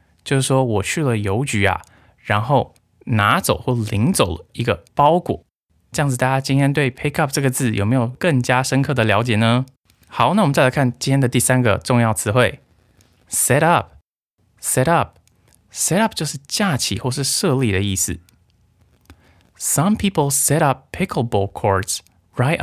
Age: 20-39